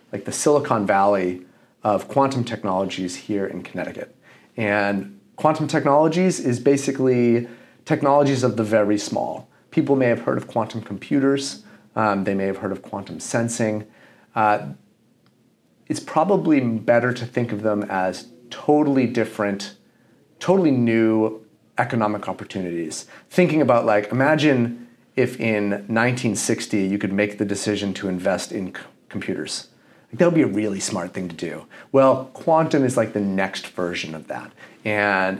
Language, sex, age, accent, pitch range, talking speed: English, male, 30-49, American, 105-125 Hz, 145 wpm